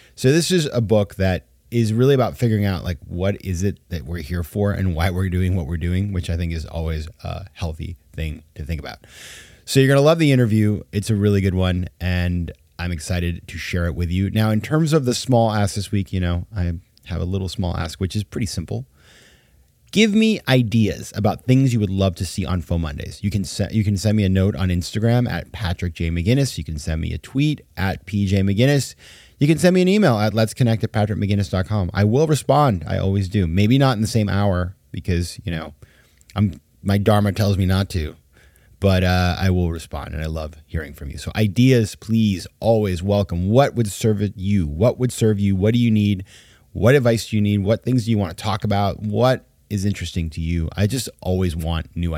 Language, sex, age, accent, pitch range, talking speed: English, male, 30-49, American, 90-110 Hz, 225 wpm